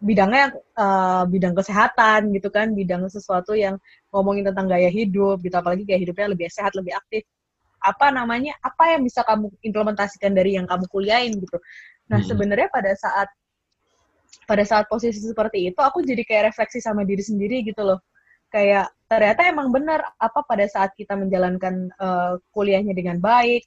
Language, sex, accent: Indonesian, female, native